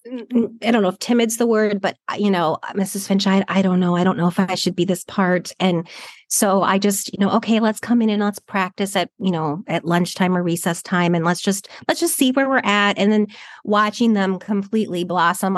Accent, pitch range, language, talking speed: American, 175-220 Hz, English, 235 wpm